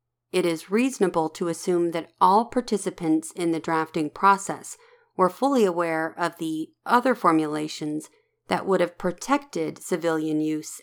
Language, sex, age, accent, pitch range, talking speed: English, female, 40-59, American, 160-205 Hz, 140 wpm